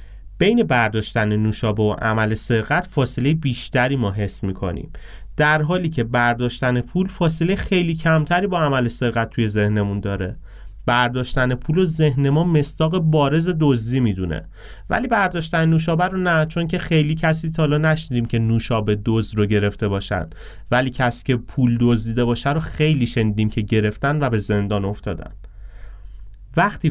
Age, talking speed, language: 30-49, 145 wpm, Persian